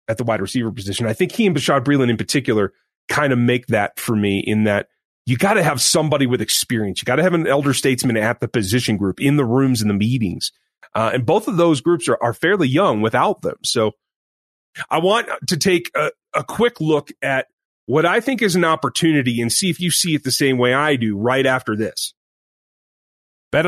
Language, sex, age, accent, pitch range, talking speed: English, male, 30-49, American, 120-160 Hz, 225 wpm